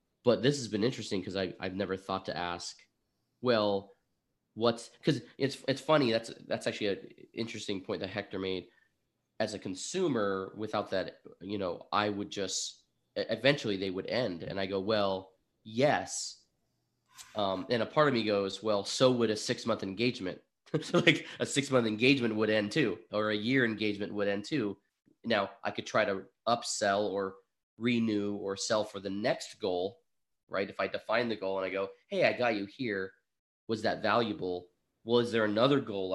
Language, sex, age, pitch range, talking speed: English, male, 20-39, 95-110 Hz, 185 wpm